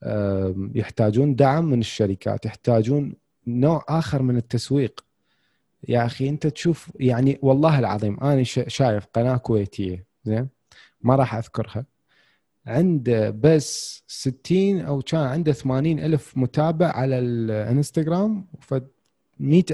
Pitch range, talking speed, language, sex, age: 120-165 Hz, 110 wpm, Arabic, male, 30-49